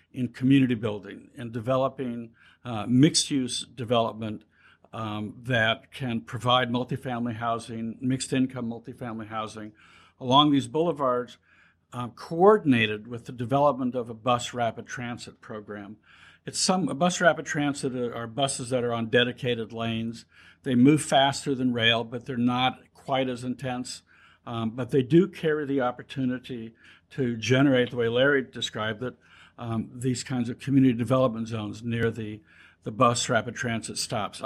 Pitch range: 115-135 Hz